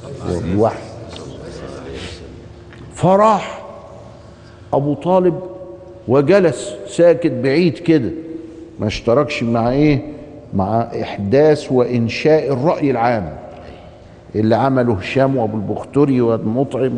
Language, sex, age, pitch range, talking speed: Arabic, male, 50-69, 110-150 Hz, 80 wpm